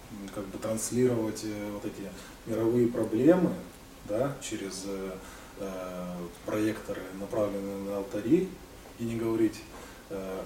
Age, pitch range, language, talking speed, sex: 20-39, 100-110 Hz, Russian, 100 wpm, male